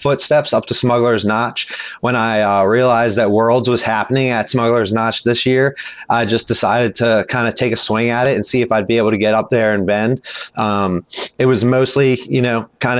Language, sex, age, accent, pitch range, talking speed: English, male, 30-49, American, 110-130 Hz, 220 wpm